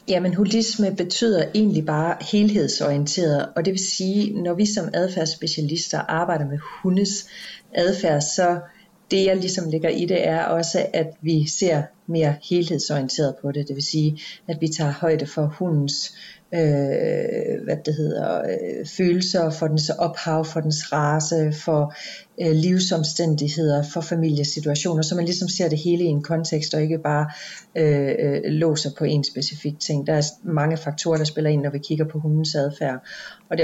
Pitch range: 150-175 Hz